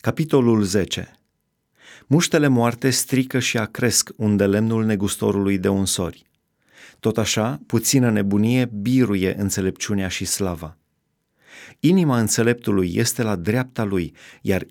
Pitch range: 100-125 Hz